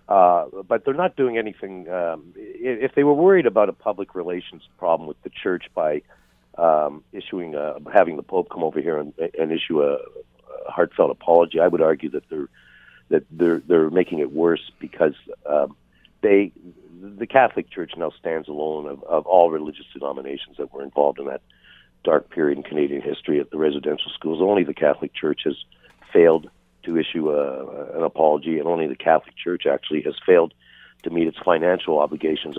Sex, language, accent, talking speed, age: male, English, American, 180 wpm, 60-79